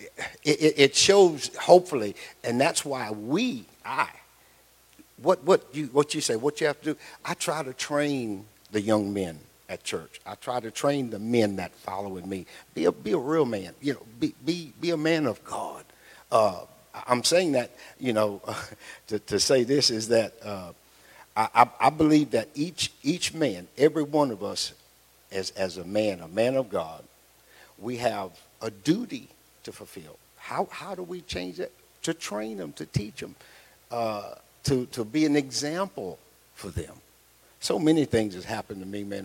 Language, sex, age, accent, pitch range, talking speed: English, male, 50-69, American, 100-150 Hz, 180 wpm